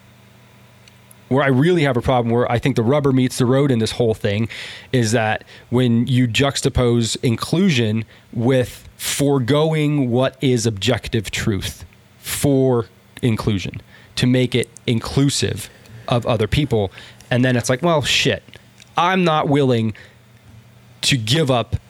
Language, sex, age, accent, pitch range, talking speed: English, male, 20-39, American, 115-140 Hz, 140 wpm